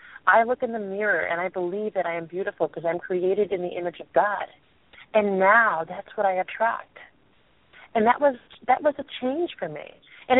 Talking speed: 210 wpm